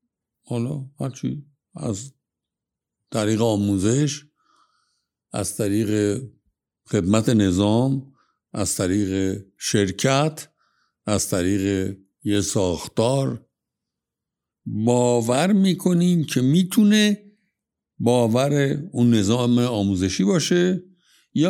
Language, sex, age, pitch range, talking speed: Persian, male, 60-79, 120-175 Hz, 65 wpm